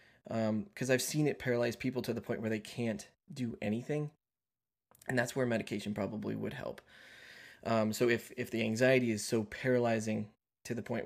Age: 20-39